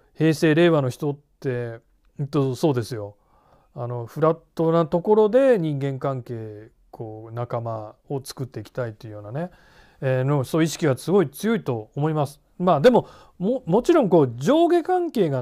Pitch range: 125-180 Hz